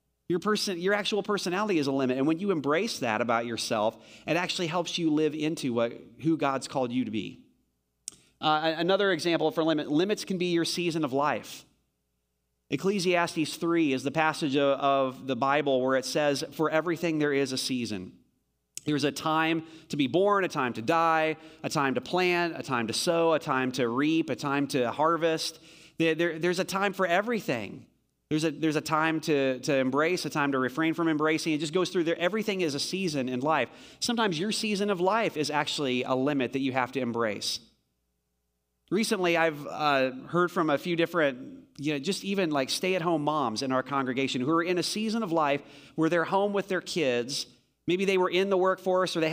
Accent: American